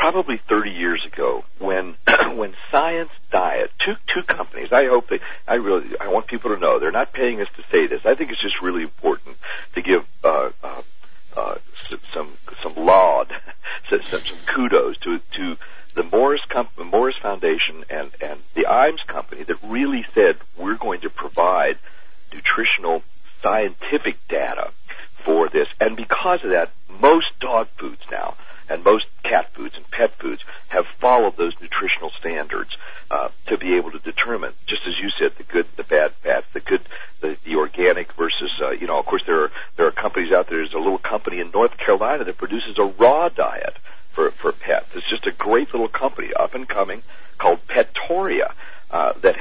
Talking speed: 185 wpm